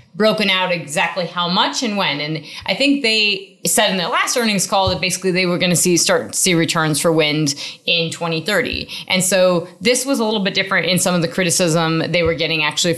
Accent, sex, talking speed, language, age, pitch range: American, female, 225 wpm, English, 30-49, 170-200 Hz